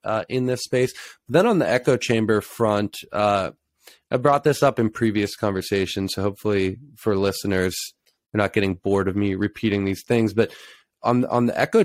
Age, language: 20-39, English